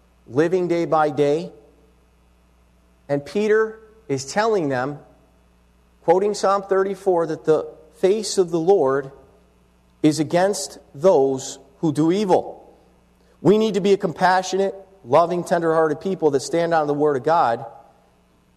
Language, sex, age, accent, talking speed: English, male, 40-59, American, 130 wpm